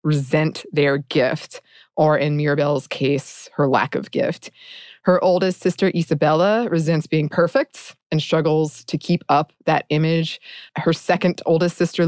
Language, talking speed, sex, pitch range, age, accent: English, 145 wpm, female, 155-205 Hz, 20-39, American